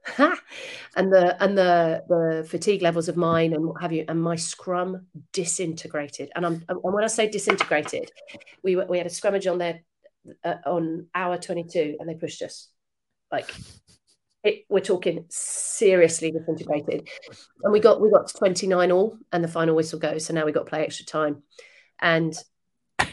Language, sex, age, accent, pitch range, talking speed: English, female, 40-59, British, 165-195 Hz, 180 wpm